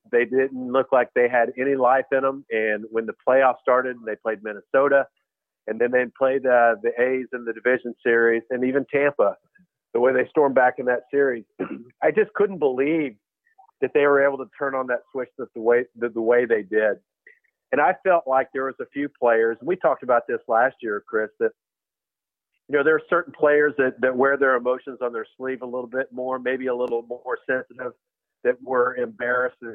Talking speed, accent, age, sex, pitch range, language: 210 wpm, American, 50-69, male, 120-145 Hz, English